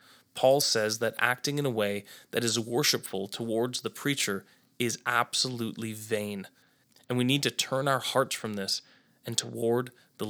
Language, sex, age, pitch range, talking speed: English, male, 20-39, 115-155 Hz, 165 wpm